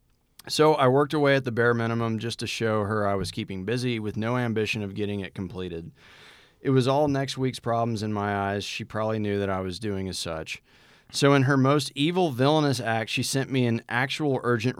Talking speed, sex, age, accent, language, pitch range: 220 wpm, male, 30-49, American, English, 105-130 Hz